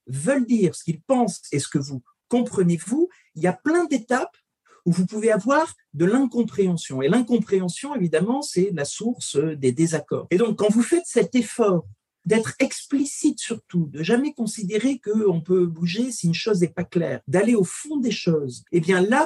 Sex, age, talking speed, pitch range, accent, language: male, 50-69, 190 wpm, 150-230 Hz, French, French